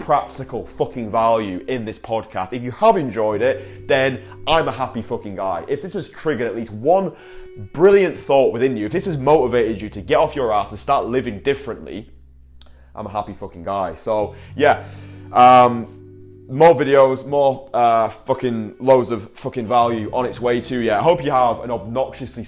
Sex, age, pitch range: male, 20-39, 100-130 Hz